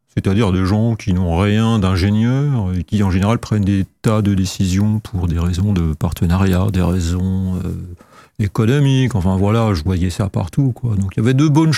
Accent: French